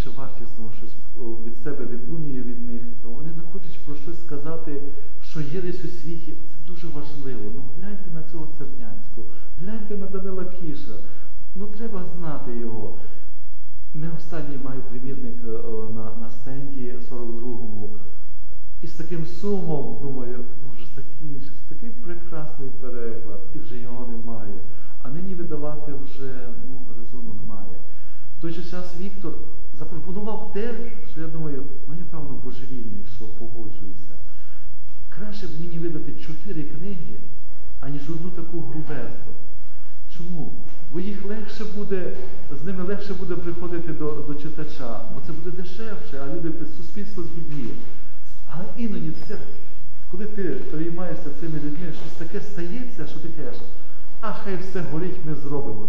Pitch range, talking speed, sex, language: 120-170 Hz, 135 wpm, male, Ukrainian